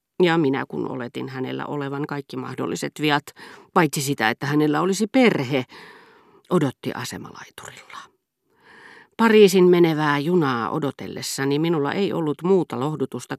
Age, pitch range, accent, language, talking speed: 40-59, 130-180 Hz, native, Finnish, 115 wpm